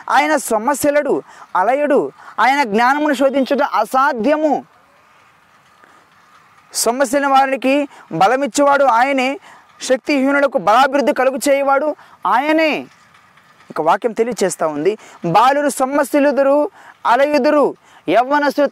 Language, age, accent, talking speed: Telugu, 20-39, native, 75 wpm